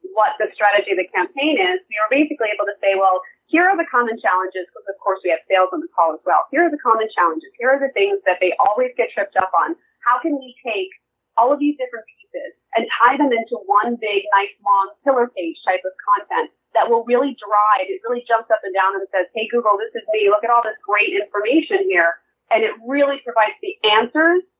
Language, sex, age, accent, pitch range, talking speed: English, female, 30-49, American, 205-270 Hz, 240 wpm